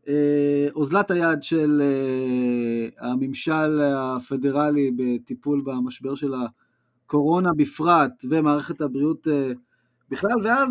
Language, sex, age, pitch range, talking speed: Hebrew, male, 30-49, 140-210 Hz, 90 wpm